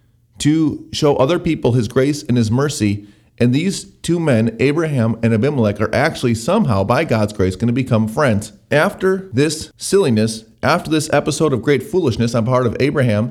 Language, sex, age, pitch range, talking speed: English, male, 30-49, 110-140 Hz, 170 wpm